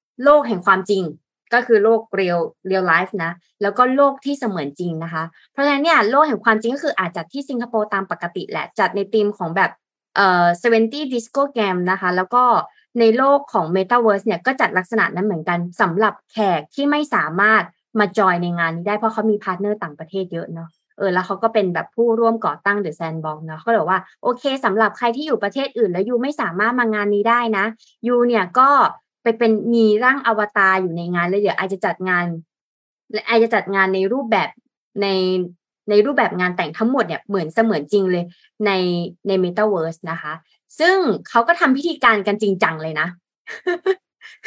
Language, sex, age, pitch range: Thai, female, 20-39, 185-240 Hz